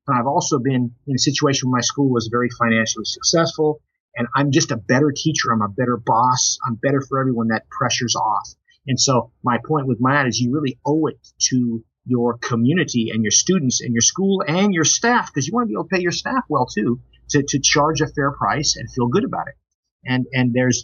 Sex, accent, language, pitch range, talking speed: male, American, English, 120-145 Hz, 230 wpm